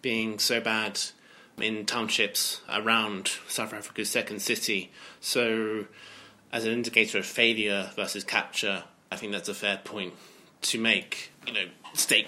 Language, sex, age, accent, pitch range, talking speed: English, male, 20-39, British, 100-115 Hz, 140 wpm